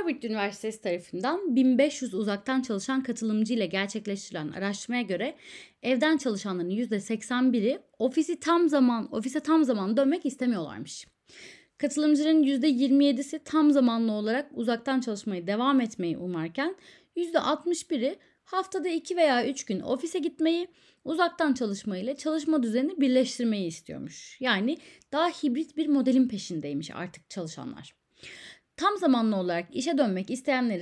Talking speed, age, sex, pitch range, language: 120 wpm, 30-49, female, 200-290 Hz, Turkish